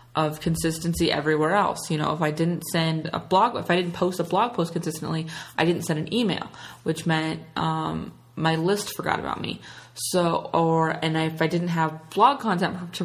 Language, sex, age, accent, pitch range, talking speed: English, female, 20-39, American, 155-185 Hz, 200 wpm